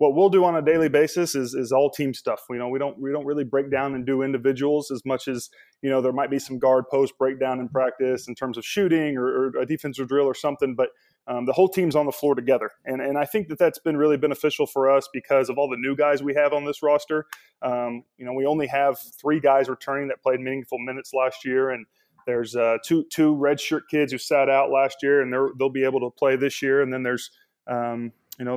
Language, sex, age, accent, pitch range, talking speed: English, male, 20-39, American, 130-145 Hz, 255 wpm